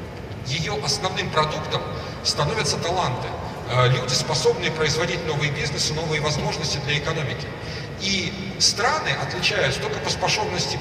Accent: native